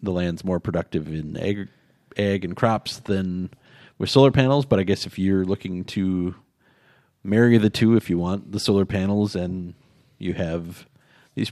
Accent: American